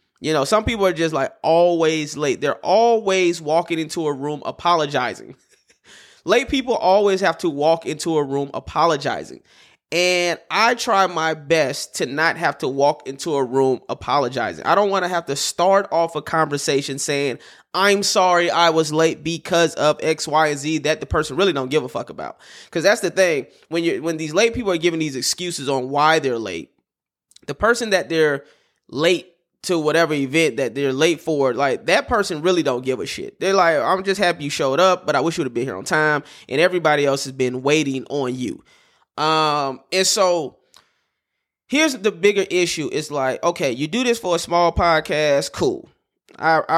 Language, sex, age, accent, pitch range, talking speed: English, male, 20-39, American, 150-180 Hz, 195 wpm